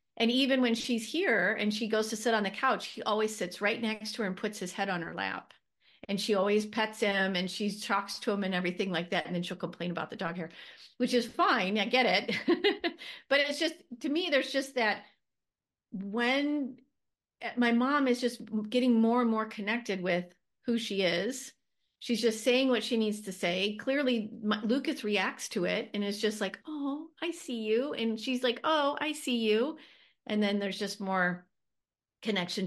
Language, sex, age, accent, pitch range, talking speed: English, female, 40-59, American, 185-235 Hz, 205 wpm